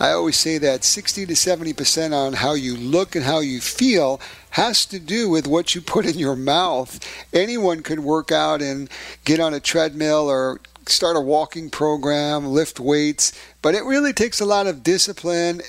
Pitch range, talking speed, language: 140-175 Hz, 185 wpm, English